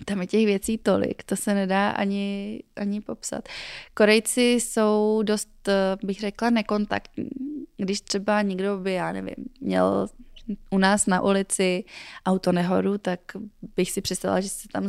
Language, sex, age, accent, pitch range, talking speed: Czech, female, 20-39, native, 185-215 Hz, 150 wpm